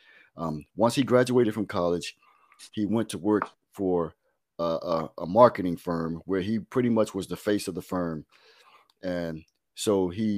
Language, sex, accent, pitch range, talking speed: English, male, American, 90-110 Hz, 170 wpm